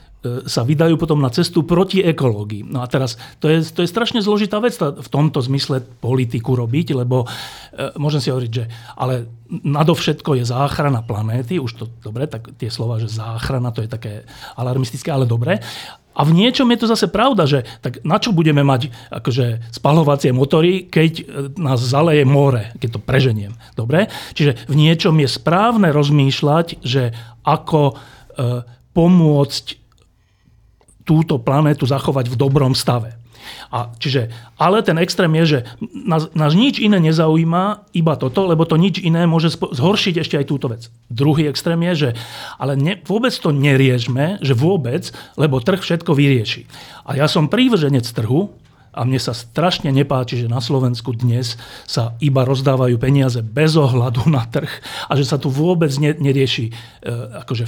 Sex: male